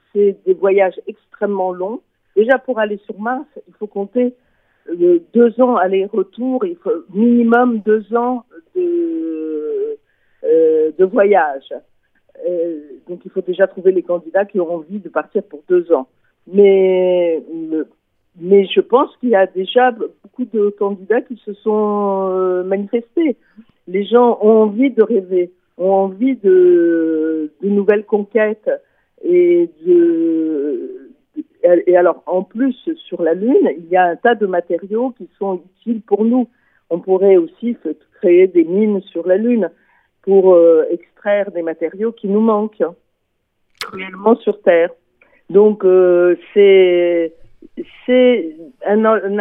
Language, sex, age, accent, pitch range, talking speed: French, female, 50-69, French, 180-245 Hz, 140 wpm